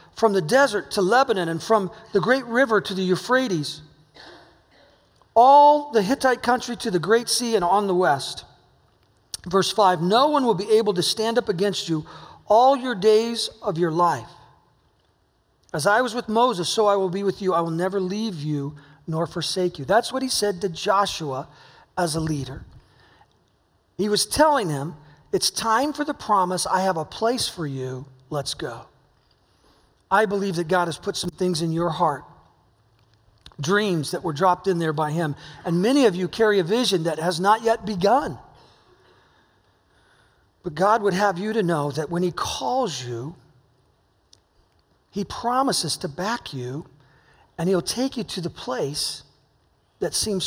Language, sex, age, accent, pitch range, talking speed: English, male, 40-59, American, 150-210 Hz, 170 wpm